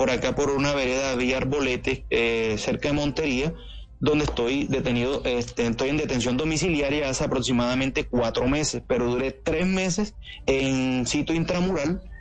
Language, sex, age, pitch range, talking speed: Spanish, male, 30-49, 130-165 Hz, 145 wpm